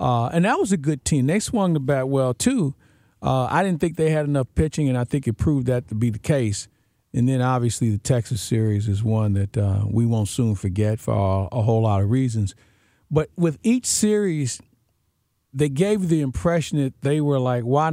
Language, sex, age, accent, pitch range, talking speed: English, male, 50-69, American, 110-140 Hz, 220 wpm